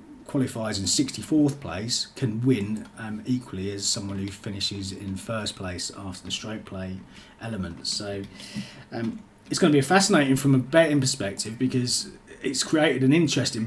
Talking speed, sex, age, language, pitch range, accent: 160 wpm, male, 30-49, English, 100-130 Hz, British